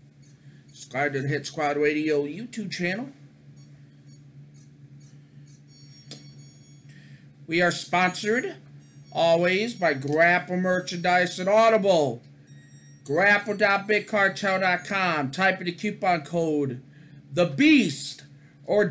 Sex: male